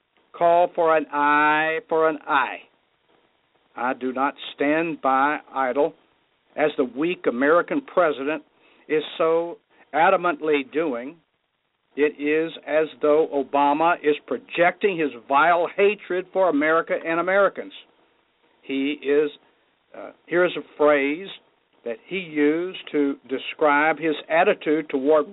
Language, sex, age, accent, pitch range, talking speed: English, male, 60-79, American, 145-180 Hz, 120 wpm